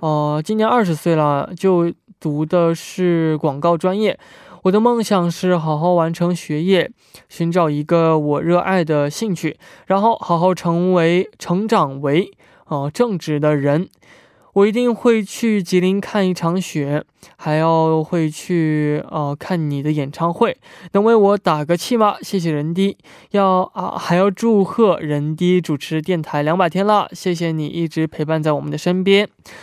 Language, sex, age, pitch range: Korean, male, 20-39, 150-190 Hz